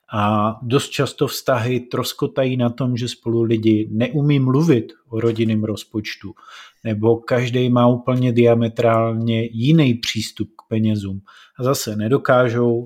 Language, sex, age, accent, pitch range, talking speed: Czech, male, 30-49, native, 115-145 Hz, 125 wpm